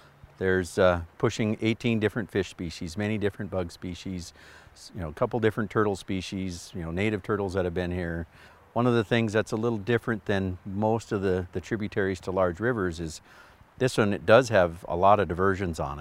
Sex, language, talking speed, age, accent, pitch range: male, English, 200 wpm, 50-69, American, 90-105 Hz